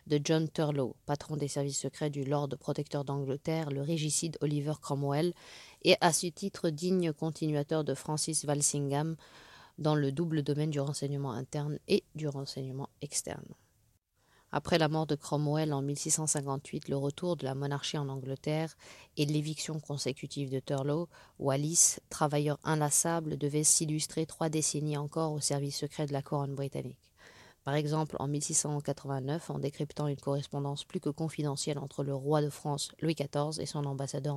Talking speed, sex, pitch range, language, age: 155 wpm, female, 140-160 Hz, French, 30-49